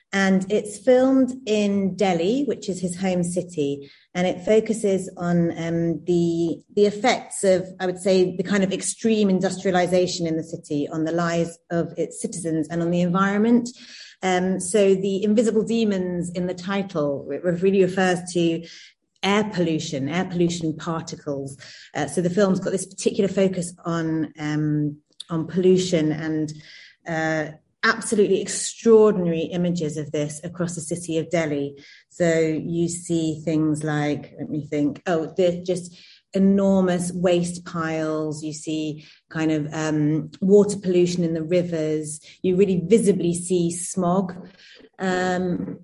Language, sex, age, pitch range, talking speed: English, female, 30-49, 165-200 Hz, 145 wpm